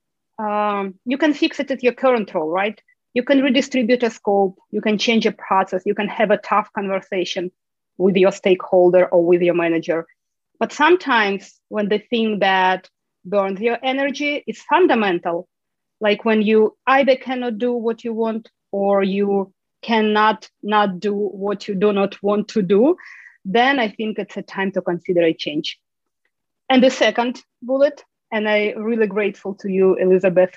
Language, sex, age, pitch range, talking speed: English, female, 30-49, 190-245 Hz, 170 wpm